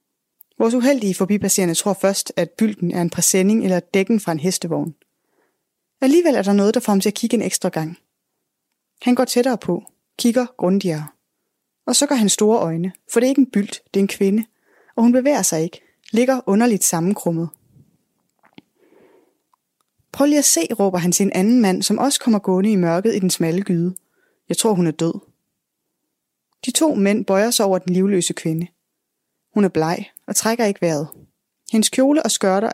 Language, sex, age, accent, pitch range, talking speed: Danish, female, 20-39, native, 175-230 Hz, 190 wpm